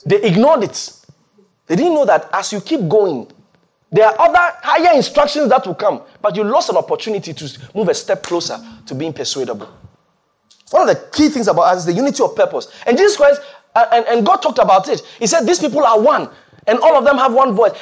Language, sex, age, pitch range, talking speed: English, male, 30-49, 225-330 Hz, 225 wpm